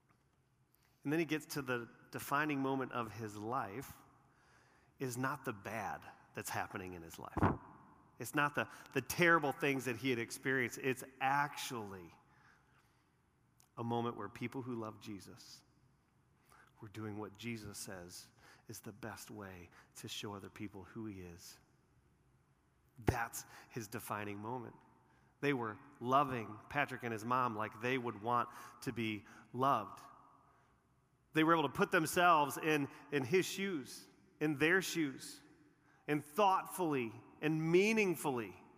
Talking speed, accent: 140 wpm, American